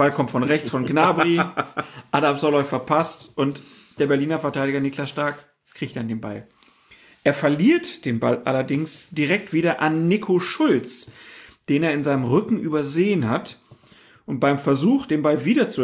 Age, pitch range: 40-59, 140-185 Hz